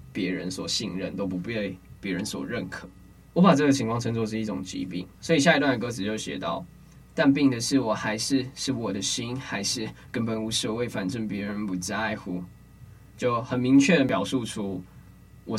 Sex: male